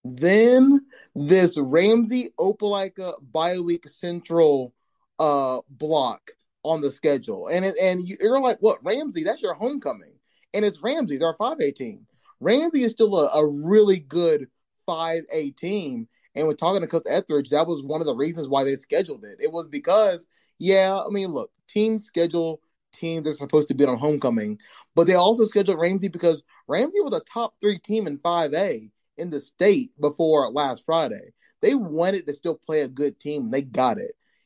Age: 20-39